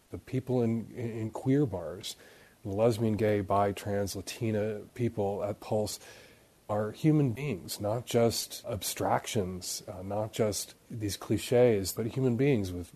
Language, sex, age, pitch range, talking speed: English, male, 40-59, 100-125 Hz, 140 wpm